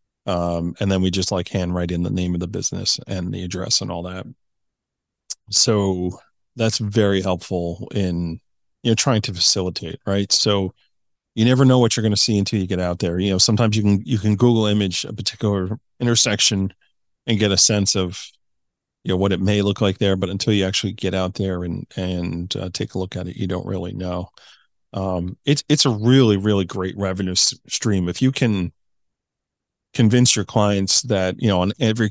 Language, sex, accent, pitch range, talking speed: English, male, American, 95-110 Hz, 205 wpm